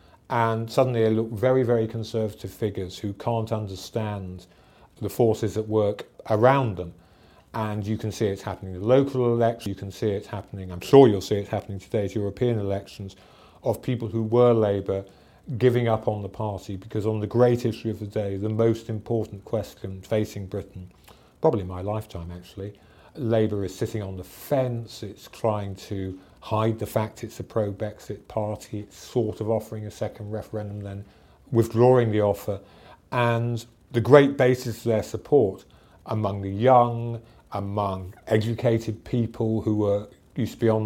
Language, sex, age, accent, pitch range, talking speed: English, male, 40-59, British, 100-115 Hz, 170 wpm